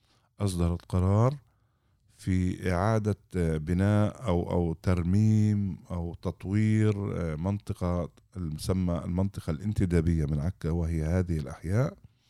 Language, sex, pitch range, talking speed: Arabic, male, 85-110 Hz, 85 wpm